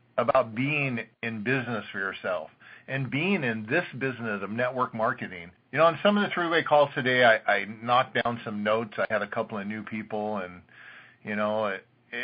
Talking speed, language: 195 wpm, English